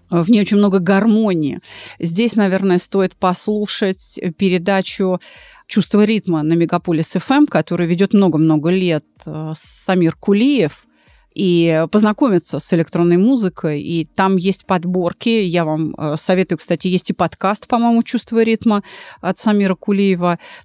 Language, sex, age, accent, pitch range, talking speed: Russian, female, 30-49, native, 175-220 Hz, 125 wpm